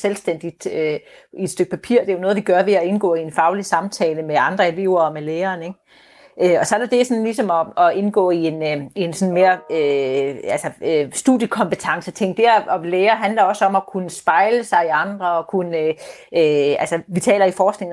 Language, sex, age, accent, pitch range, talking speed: Danish, female, 30-49, native, 175-220 Hz, 225 wpm